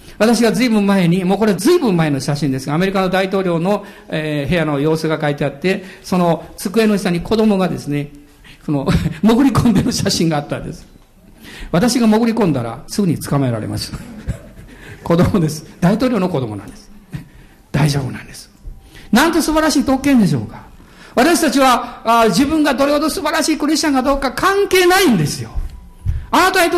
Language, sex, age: Japanese, male, 50-69